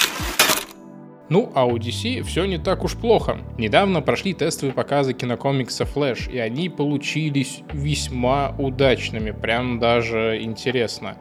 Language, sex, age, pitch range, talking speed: Russian, male, 20-39, 115-135 Hz, 125 wpm